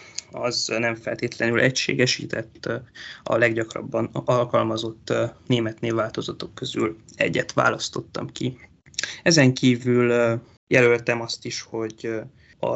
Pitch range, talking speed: 115-130 Hz, 95 wpm